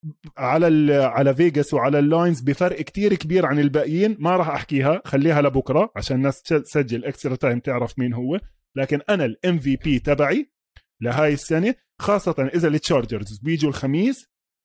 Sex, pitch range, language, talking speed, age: male, 140-200 Hz, Arabic, 150 wpm, 20-39